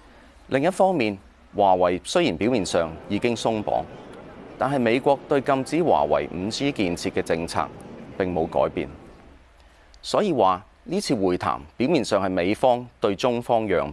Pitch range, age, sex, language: 75-120 Hz, 30-49, male, Chinese